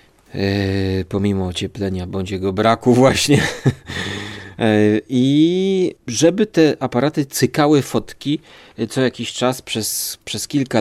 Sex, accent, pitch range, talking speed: male, native, 110-155 Hz, 105 wpm